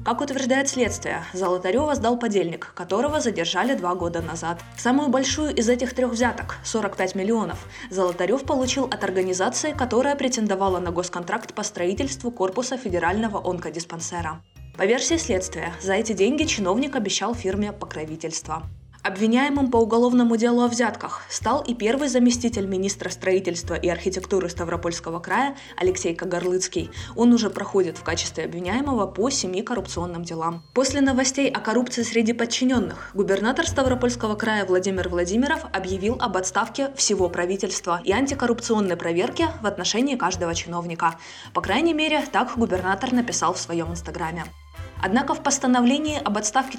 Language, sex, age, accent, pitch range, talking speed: Russian, female, 20-39, native, 180-250 Hz, 135 wpm